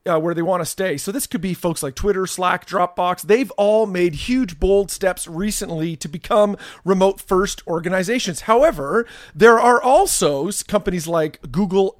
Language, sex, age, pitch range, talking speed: English, male, 40-59, 160-200 Hz, 165 wpm